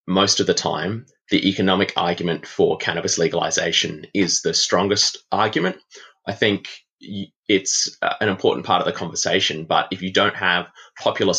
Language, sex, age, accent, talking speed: English, male, 20-39, Australian, 155 wpm